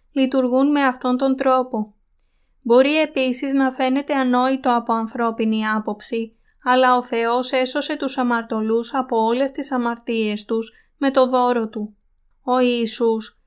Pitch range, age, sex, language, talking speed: 225-265 Hz, 20-39, female, Greek, 135 wpm